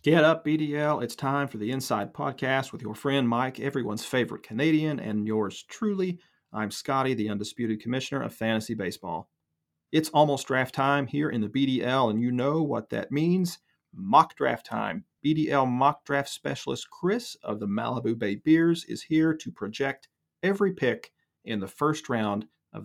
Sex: male